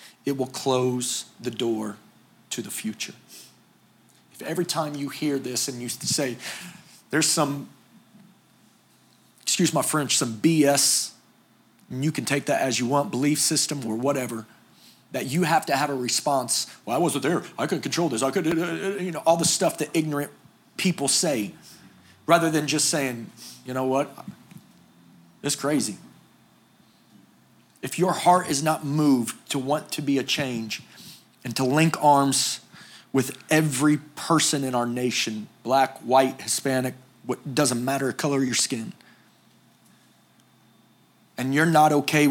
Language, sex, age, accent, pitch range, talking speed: English, male, 40-59, American, 125-150 Hz, 150 wpm